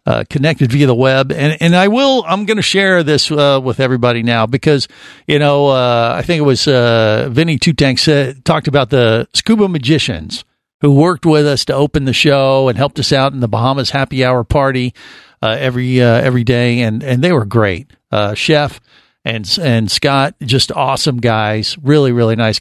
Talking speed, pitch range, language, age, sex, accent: 195 wpm, 120-155 Hz, English, 50-69, male, American